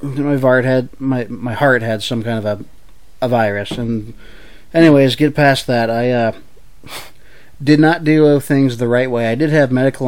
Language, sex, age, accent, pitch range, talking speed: English, male, 20-39, American, 110-135 Hz, 185 wpm